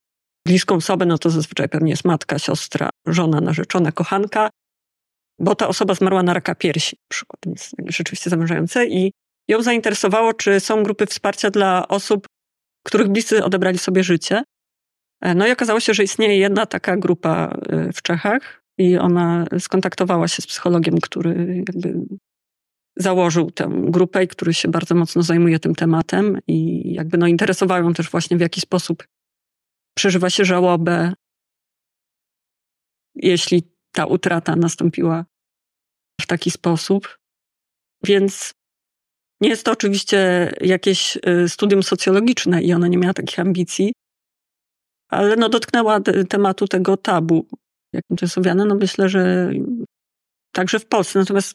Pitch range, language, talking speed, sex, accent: 175-200 Hz, Polish, 135 wpm, female, native